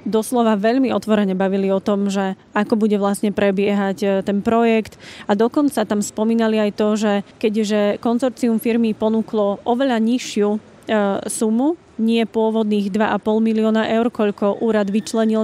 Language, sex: Slovak, female